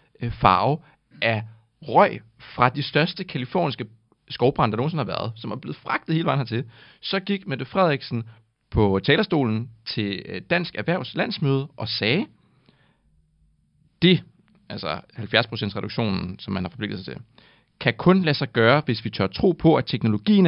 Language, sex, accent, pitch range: Danish, male, native, 110-170 Hz